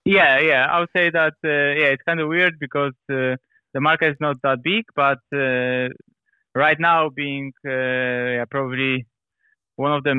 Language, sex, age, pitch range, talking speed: Danish, male, 20-39, 125-150 Hz, 185 wpm